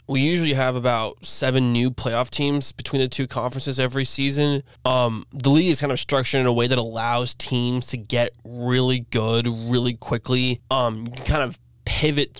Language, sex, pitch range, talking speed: English, male, 115-130 Hz, 190 wpm